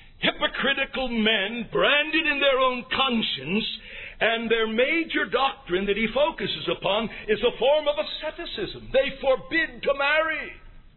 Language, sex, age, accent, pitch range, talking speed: English, male, 60-79, American, 190-280 Hz, 130 wpm